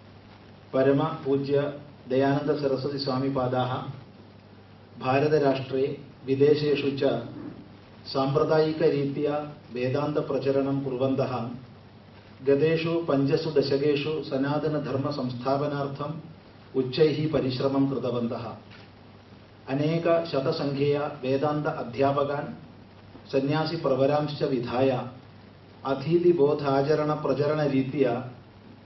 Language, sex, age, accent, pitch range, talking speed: Malayalam, male, 40-59, native, 125-145 Hz, 35 wpm